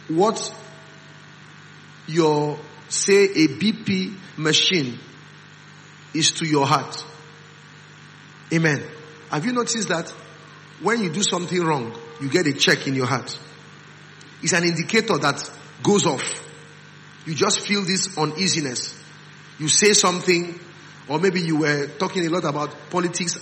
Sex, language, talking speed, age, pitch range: male, English, 130 wpm, 40-59, 150-190 Hz